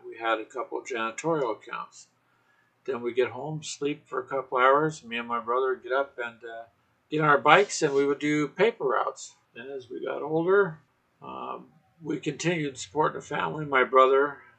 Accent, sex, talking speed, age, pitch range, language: American, male, 195 wpm, 50-69, 120-160 Hz, English